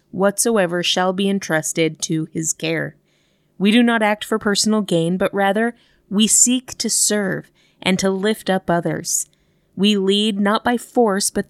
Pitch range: 170-210 Hz